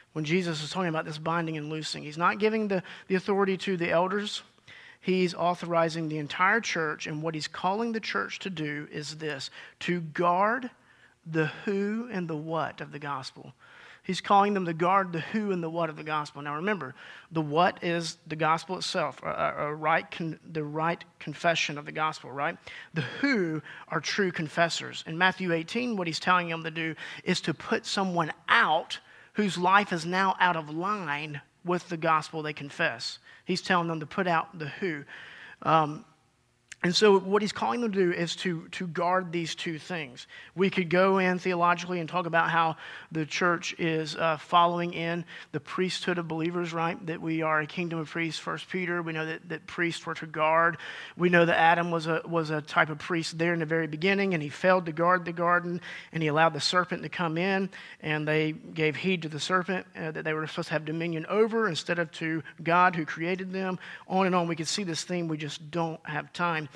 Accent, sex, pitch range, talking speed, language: American, male, 160-185 Hz, 210 wpm, English